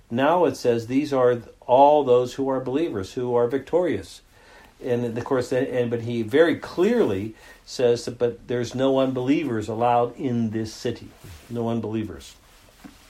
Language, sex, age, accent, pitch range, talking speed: English, male, 60-79, American, 105-135 Hz, 140 wpm